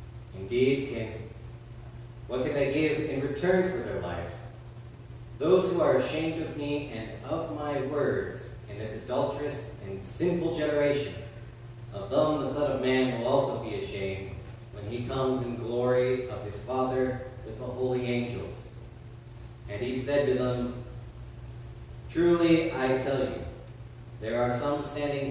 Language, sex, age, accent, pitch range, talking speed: English, male, 40-59, American, 115-130 Hz, 145 wpm